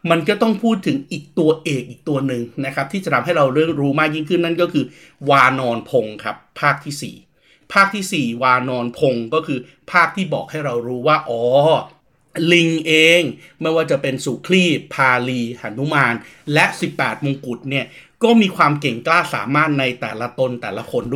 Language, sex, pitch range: Thai, male, 120-165 Hz